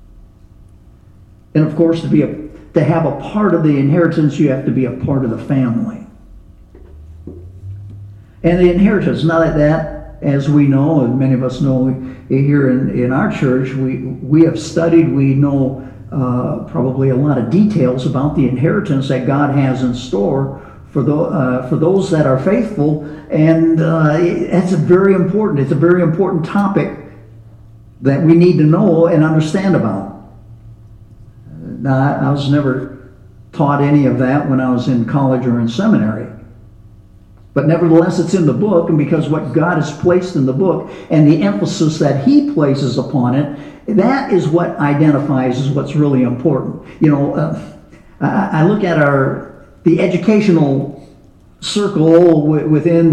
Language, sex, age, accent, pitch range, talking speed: English, male, 60-79, American, 130-165 Hz, 165 wpm